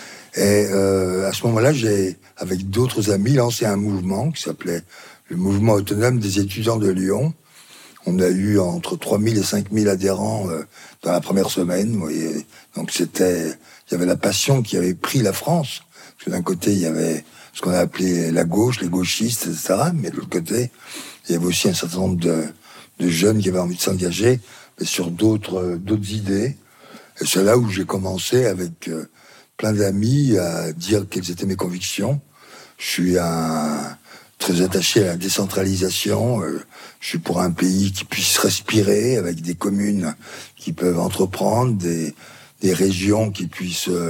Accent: French